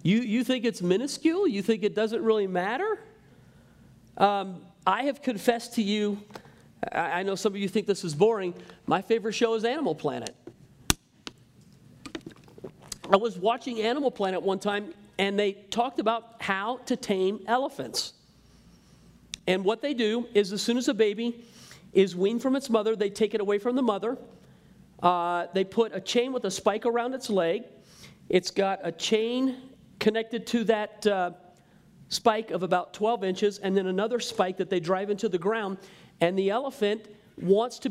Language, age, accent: English, 40-59, American